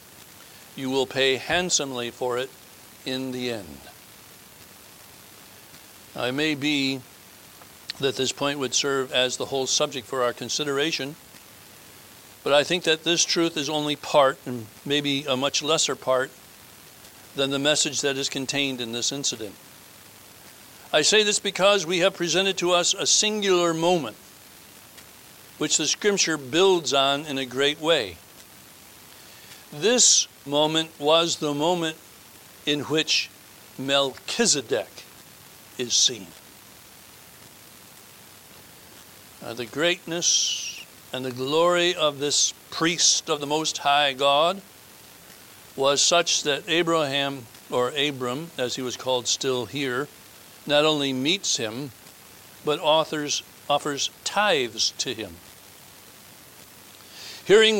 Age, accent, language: 60-79, American, English